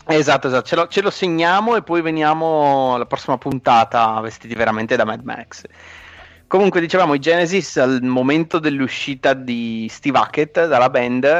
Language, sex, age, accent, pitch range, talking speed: Italian, male, 30-49, native, 115-150 Hz, 160 wpm